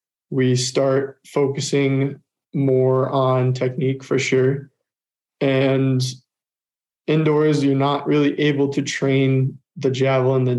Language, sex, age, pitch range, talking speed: English, male, 20-39, 130-140 Hz, 115 wpm